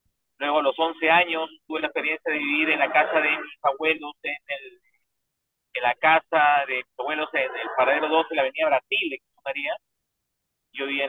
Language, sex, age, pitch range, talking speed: Spanish, male, 40-59, 135-175 Hz, 190 wpm